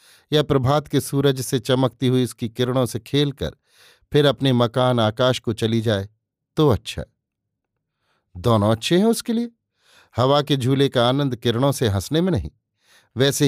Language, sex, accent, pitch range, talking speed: Hindi, male, native, 115-155 Hz, 160 wpm